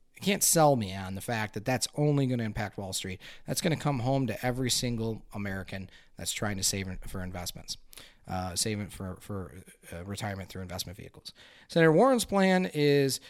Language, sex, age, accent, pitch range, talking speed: English, male, 30-49, American, 100-125 Hz, 195 wpm